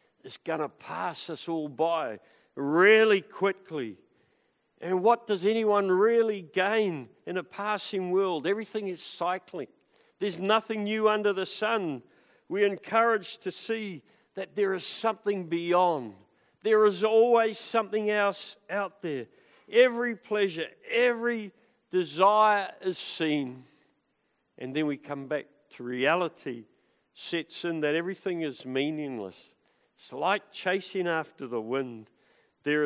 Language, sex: English, male